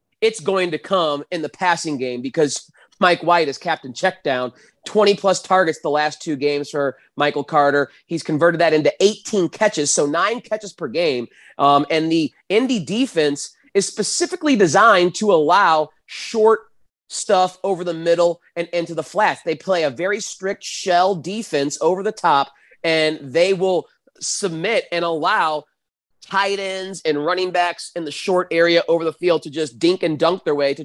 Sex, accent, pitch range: male, American, 145-190 Hz